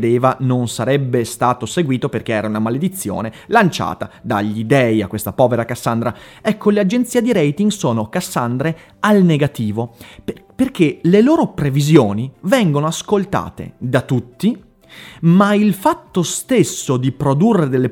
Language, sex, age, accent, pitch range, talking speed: Italian, male, 30-49, native, 125-185 Hz, 135 wpm